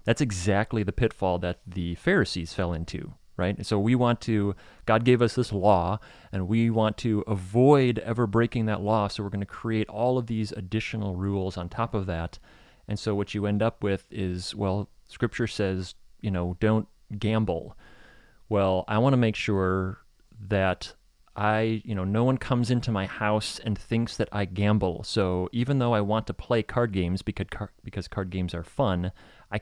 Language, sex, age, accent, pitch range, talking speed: English, male, 30-49, American, 95-115 Hz, 195 wpm